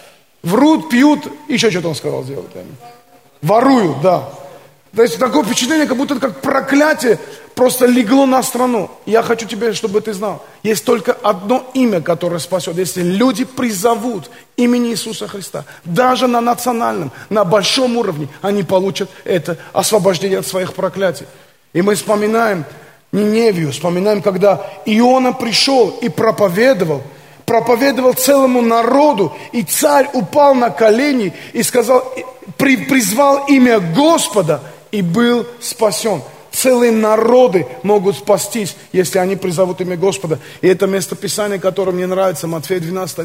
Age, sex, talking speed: 30-49, male, 130 wpm